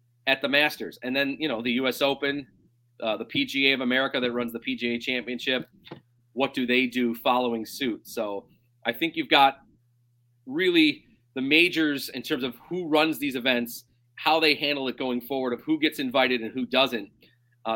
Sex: male